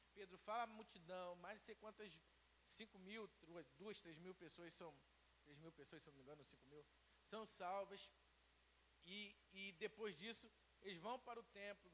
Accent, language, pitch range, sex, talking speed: Brazilian, Portuguese, 165-220 Hz, male, 120 wpm